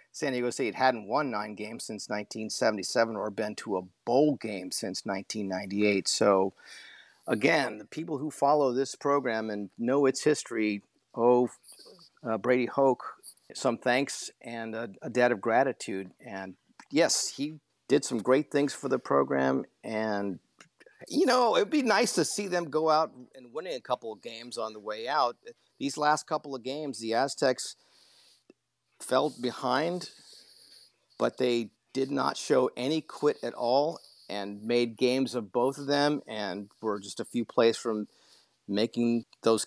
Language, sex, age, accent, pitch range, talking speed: English, male, 50-69, American, 105-135 Hz, 160 wpm